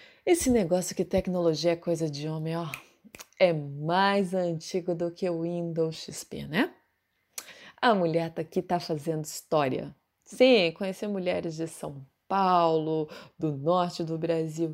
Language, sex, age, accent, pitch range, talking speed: Portuguese, female, 20-39, Brazilian, 155-190 Hz, 145 wpm